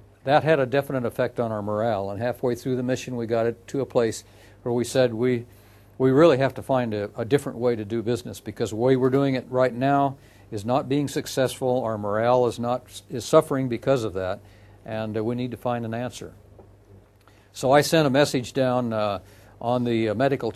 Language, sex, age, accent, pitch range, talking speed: English, male, 60-79, American, 105-130 Hz, 215 wpm